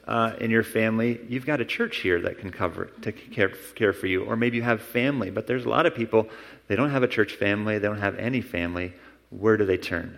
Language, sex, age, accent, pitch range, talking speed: English, male, 30-49, American, 105-140 Hz, 255 wpm